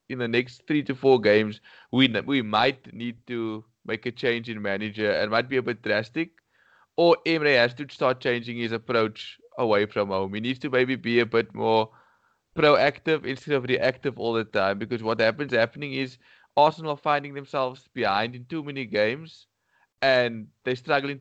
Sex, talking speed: male, 185 wpm